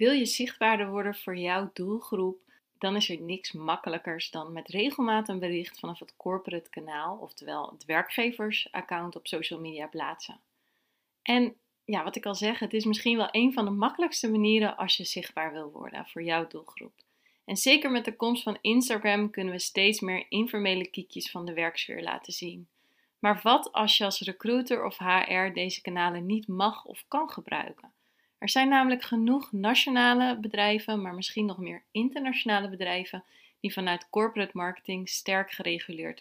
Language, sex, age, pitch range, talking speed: Dutch, female, 30-49, 175-235 Hz, 165 wpm